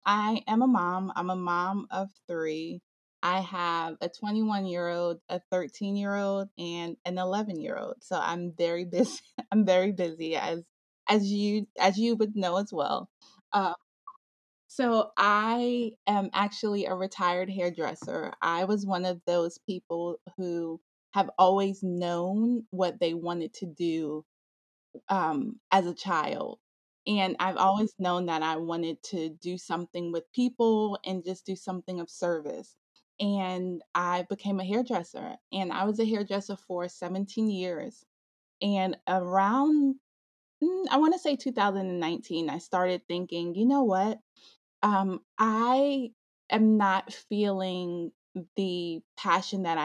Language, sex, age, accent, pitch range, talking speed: English, female, 20-39, American, 175-210 Hz, 145 wpm